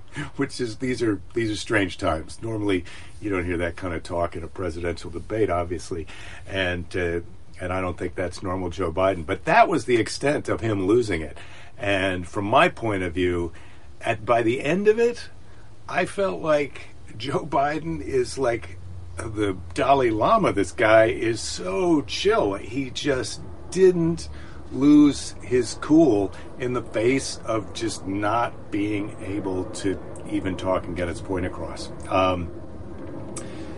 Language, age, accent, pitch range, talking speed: English, 50-69, American, 90-115 Hz, 160 wpm